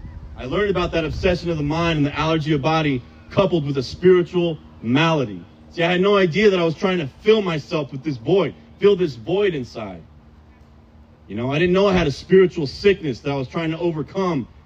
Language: English